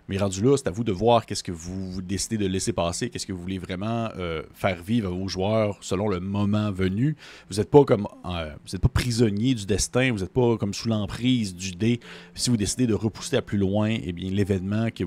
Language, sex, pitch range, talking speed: French, male, 95-120 Hz, 230 wpm